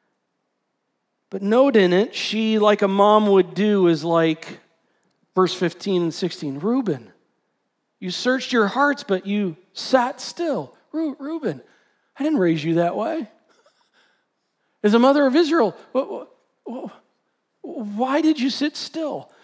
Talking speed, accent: 130 wpm, American